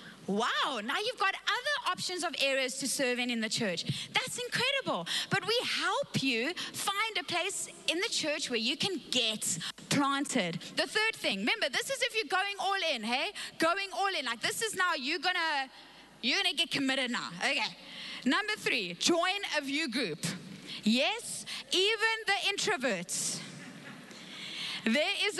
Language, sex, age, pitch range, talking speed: English, female, 20-39, 210-350 Hz, 165 wpm